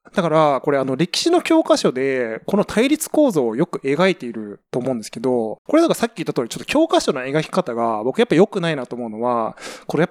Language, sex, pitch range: Japanese, male, 130-210 Hz